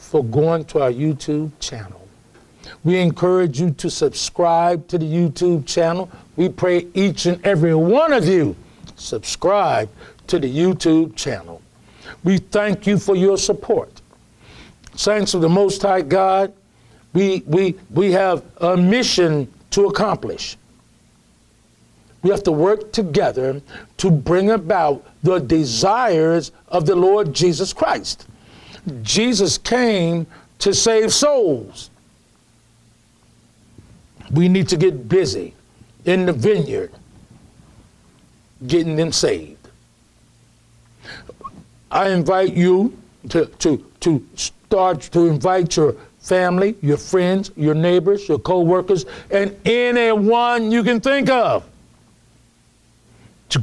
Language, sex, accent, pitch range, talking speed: English, male, American, 160-195 Hz, 115 wpm